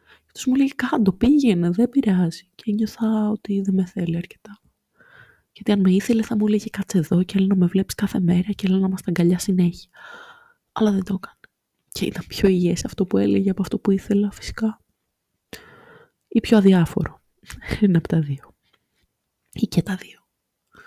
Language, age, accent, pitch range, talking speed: Greek, 20-39, native, 180-220 Hz, 185 wpm